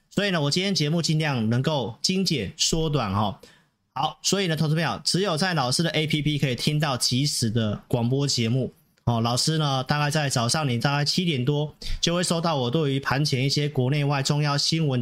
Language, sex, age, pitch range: Chinese, male, 30-49, 125-160 Hz